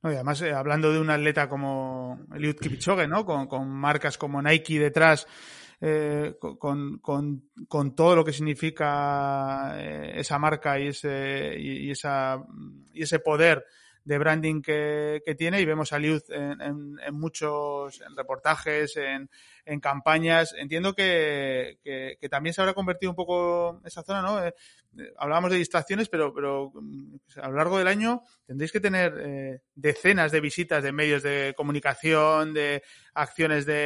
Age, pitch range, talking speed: 20-39, 145-160 Hz, 165 wpm